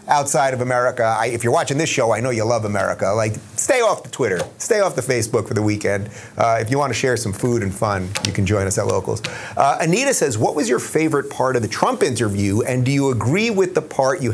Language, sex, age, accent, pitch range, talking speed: English, male, 30-49, American, 110-140 Hz, 250 wpm